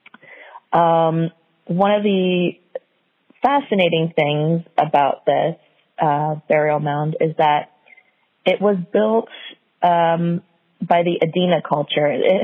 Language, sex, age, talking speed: English, female, 30-49, 105 wpm